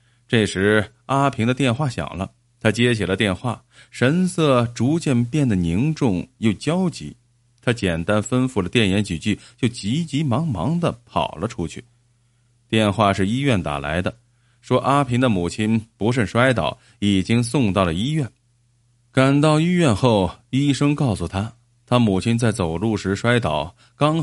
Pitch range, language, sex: 105-130 Hz, Chinese, male